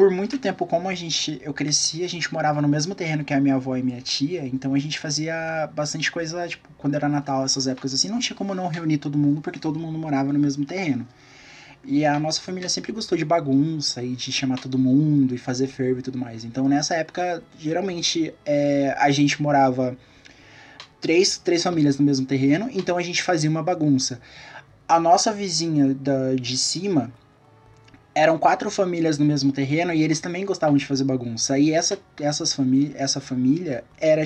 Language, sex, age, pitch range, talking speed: Portuguese, male, 20-39, 135-170 Hz, 200 wpm